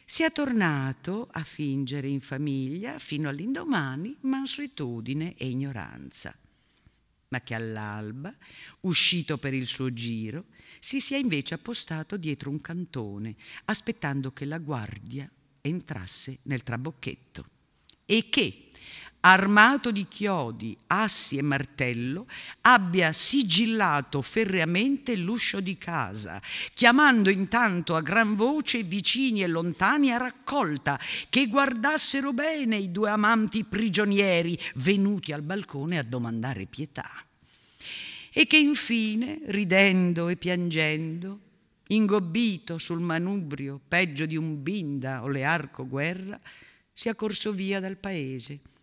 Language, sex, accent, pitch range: Italian, female, native, 140-215 Hz